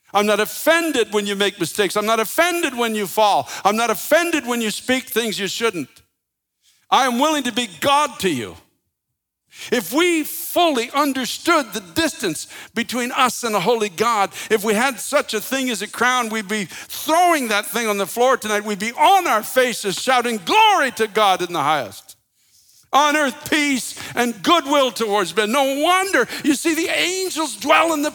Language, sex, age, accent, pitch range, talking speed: English, male, 60-79, American, 220-310 Hz, 190 wpm